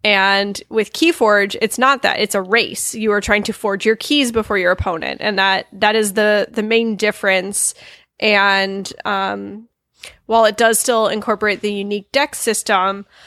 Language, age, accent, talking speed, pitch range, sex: English, 10-29, American, 170 wpm, 205-230 Hz, female